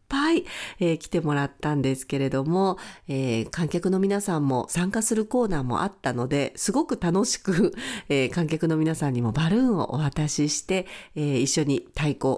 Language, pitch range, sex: Japanese, 150-205 Hz, female